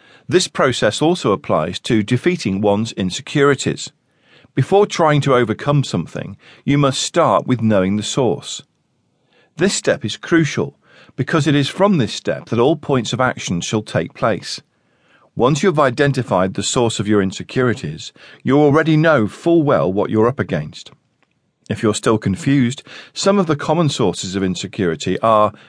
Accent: British